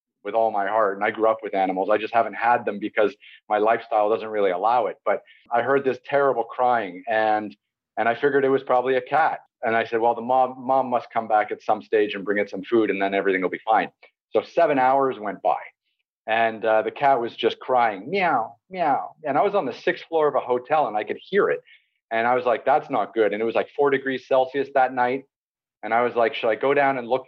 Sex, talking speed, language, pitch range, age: male, 255 wpm, English, 115-135 Hz, 40-59